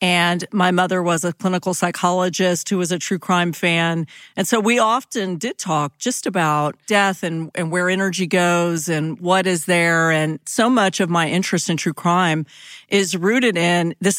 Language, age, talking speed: English, 40-59, 185 wpm